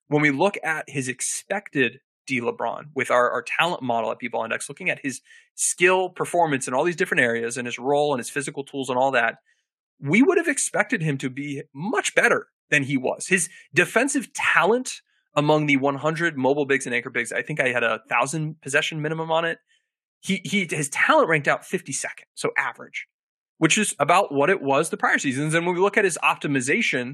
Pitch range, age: 135-200 Hz, 20-39